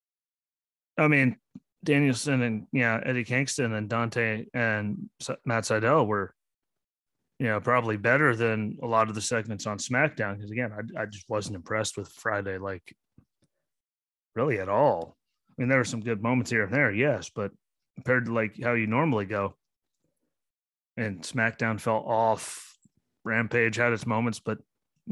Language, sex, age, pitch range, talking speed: English, male, 30-49, 105-125 Hz, 160 wpm